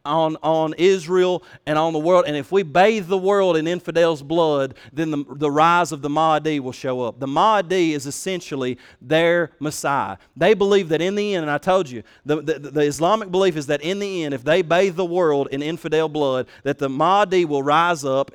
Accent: American